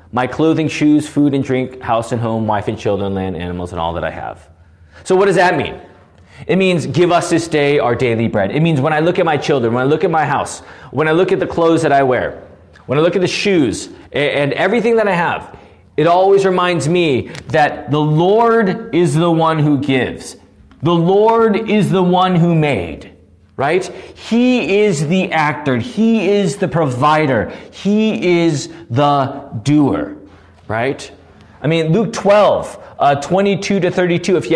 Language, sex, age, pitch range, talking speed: English, male, 30-49, 140-190 Hz, 190 wpm